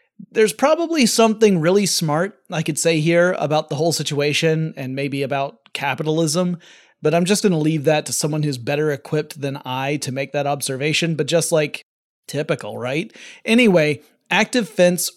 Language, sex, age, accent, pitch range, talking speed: English, male, 30-49, American, 150-185 Hz, 165 wpm